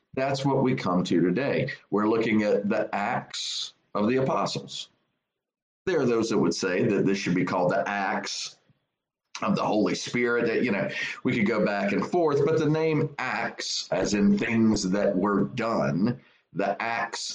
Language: English